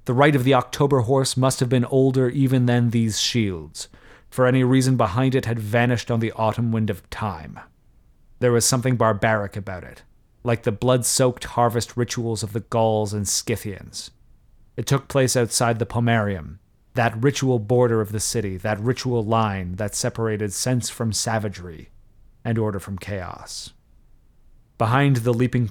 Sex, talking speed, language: male, 165 wpm, English